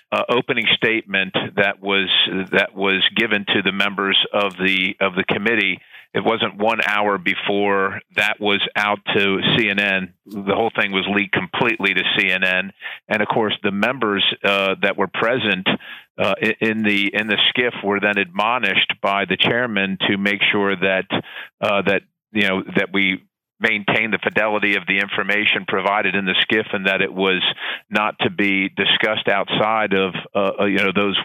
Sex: male